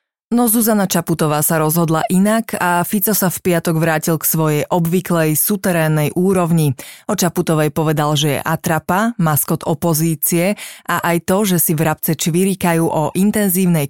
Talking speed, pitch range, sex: 150 wpm, 160-185 Hz, female